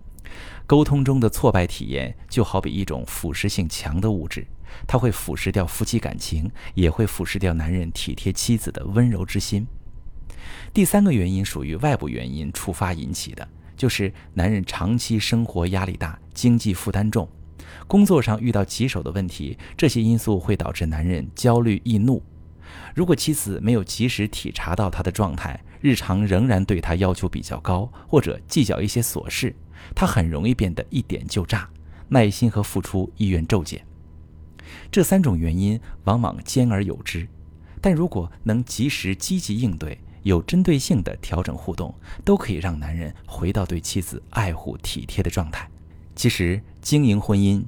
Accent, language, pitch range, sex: native, Chinese, 85-110 Hz, male